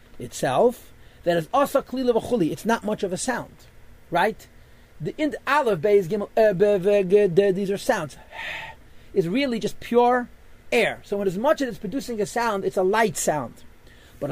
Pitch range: 175-230 Hz